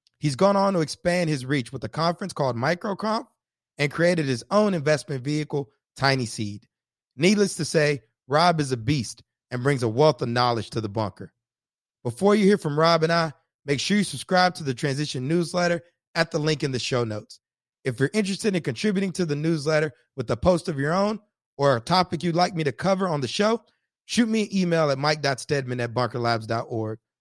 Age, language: 30-49, English